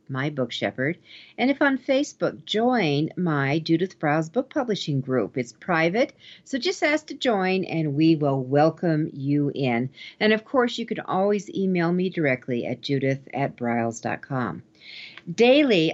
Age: 50-69